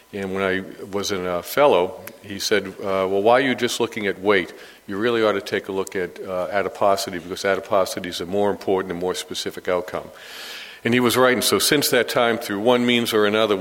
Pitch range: 95-115 Hz